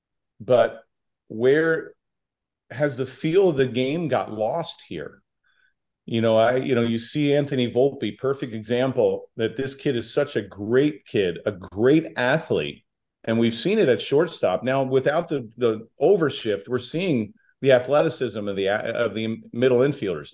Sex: male